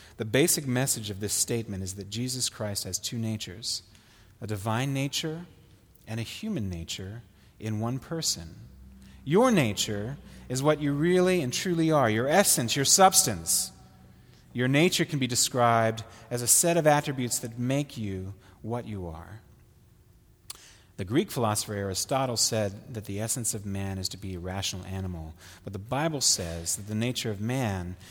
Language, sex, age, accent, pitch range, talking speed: English, male, 30-49, American, 100-130 Hz, 165 wpm